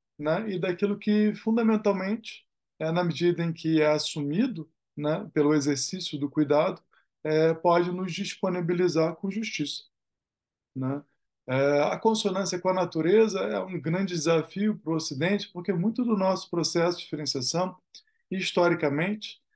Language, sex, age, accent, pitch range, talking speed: Portuguese, male, 20-39, Brazilian, 150-185 Hz, 140 wpm